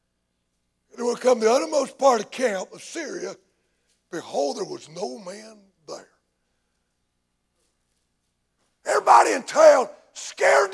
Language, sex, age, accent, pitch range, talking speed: English, male, 60-79, American, 205-295 Hz, 125 wpm